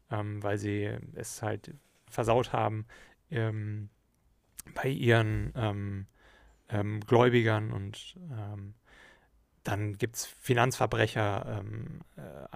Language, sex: German, male